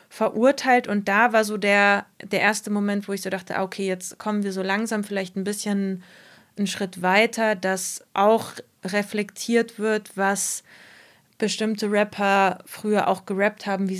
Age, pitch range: 20-39, 190-220 Hz